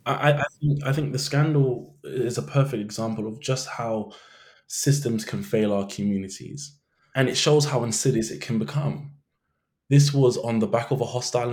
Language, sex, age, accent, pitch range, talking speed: English, male, 20-39, British, 105-140 Hz, 170 wpm